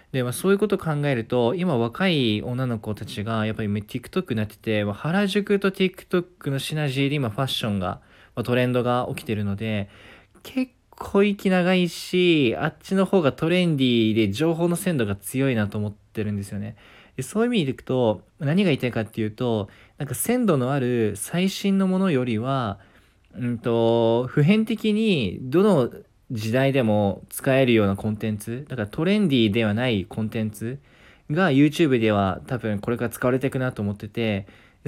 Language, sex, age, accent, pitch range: Japanese, male, 20-39, native, 105-145 Hz